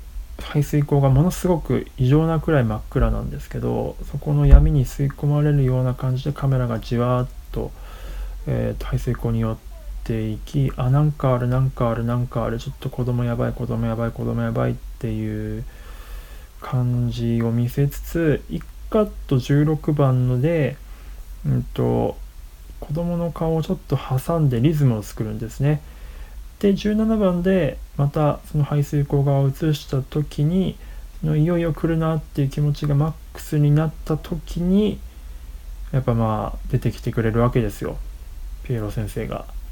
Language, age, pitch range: Japanese, 20-39, 110-150 Hz